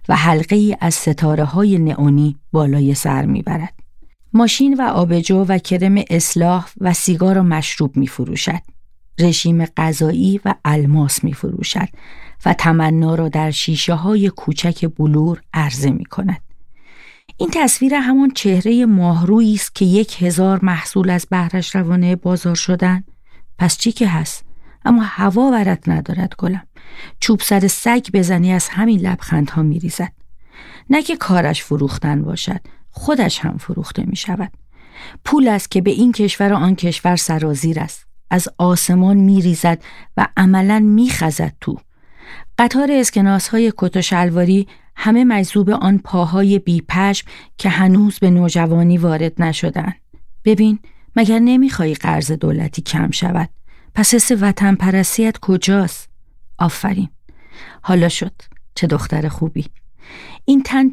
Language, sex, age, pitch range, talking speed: Persian, female, 40-59, 165-210 Hz, 130 wpm